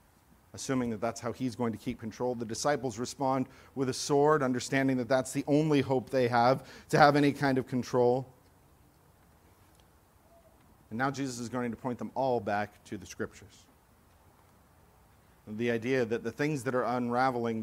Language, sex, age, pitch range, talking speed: English, male, 40-59, 110-135 Hz, 170 wpm